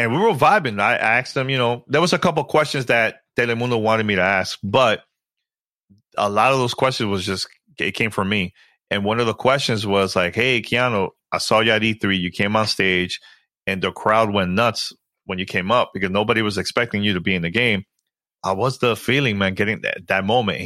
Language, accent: English, American